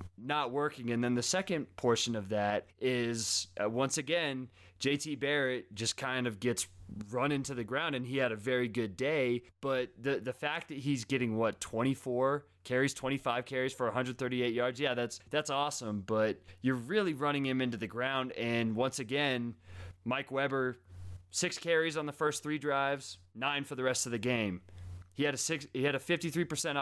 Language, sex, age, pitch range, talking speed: English, male, 20-39, 115-140 Hz, 190 wpm